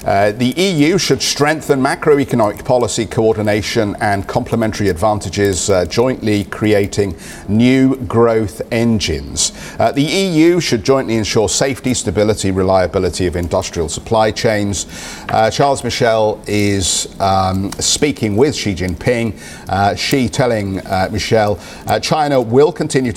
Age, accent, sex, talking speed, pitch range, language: 50-69, British, male, 125 wpm, 95-115 Hz, English